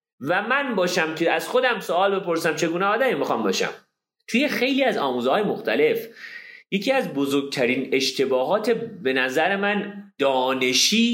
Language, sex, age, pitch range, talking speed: Persian, male, 30-49, 165-250 Hz, 140 wpm